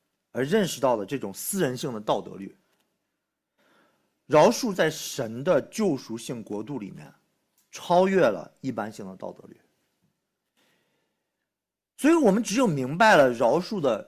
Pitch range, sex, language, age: 130-200 Hz, male, Chinese, 50-69